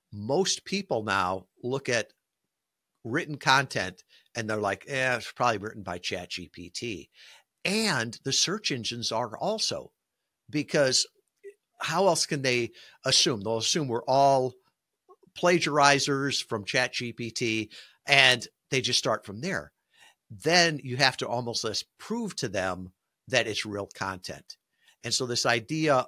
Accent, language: American, English